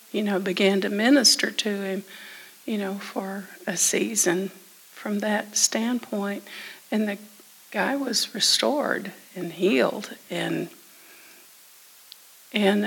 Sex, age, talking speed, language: female, 50-69, 110 wpm, English